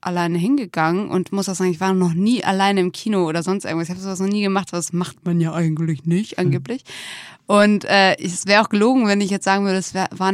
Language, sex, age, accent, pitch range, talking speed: German, female, 20-39, German, 175-200 Hz, 250 wpm